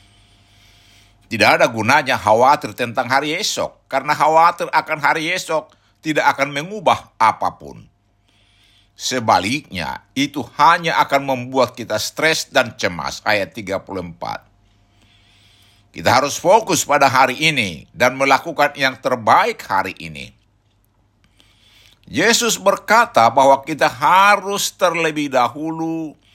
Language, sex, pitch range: Indonesian, male, 100-150 Hz